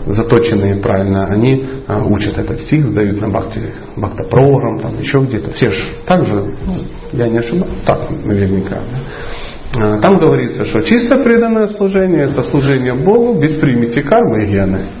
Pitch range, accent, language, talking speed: 105-135 Hz, native, Russian, 140 wpm